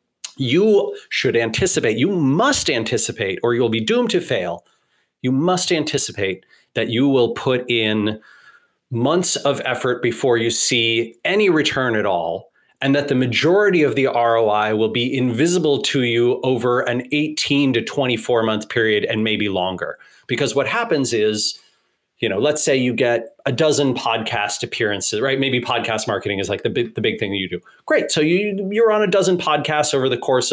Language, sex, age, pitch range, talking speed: English, male, 30-49, 120-185 Hz, 175 wpm